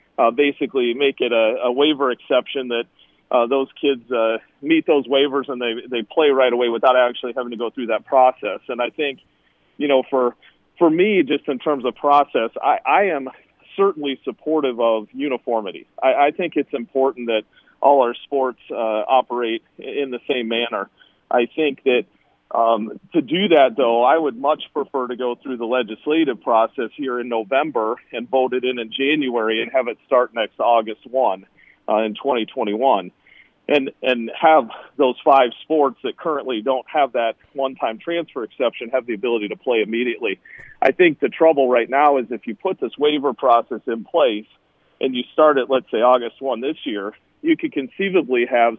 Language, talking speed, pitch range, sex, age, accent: English, 185 wpm, 115-145 Hz, male, 40-59, American